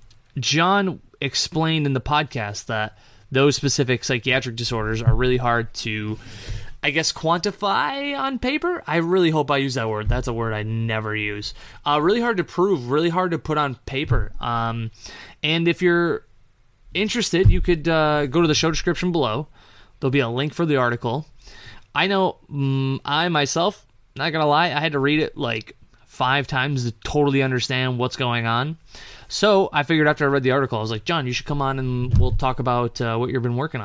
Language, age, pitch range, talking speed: English, 20-39, 115-155 Hz, 200 wpm